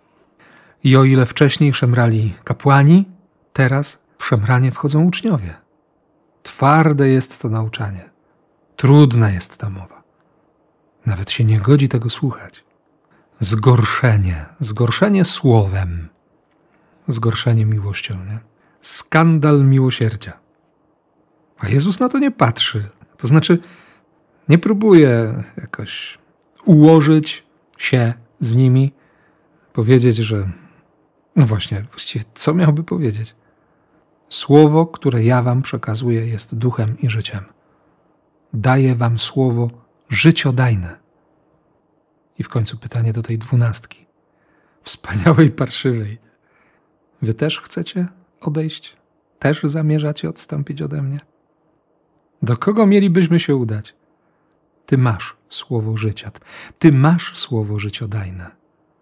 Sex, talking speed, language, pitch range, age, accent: male, 100 wpm, Polish, 115-155 Hz, 40-59, native